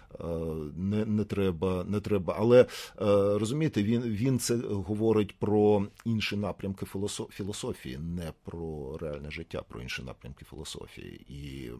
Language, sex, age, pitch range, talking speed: Ukrainian, male, 40-59, 80-105 Hz, 120 wpm